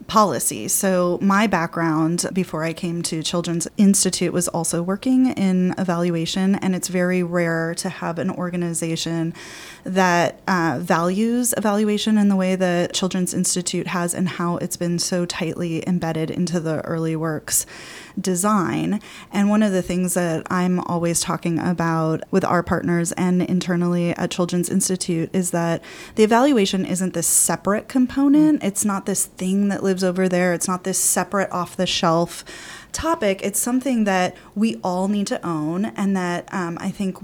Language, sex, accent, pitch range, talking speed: English, female, American, 170-190 Hz, 160 wpm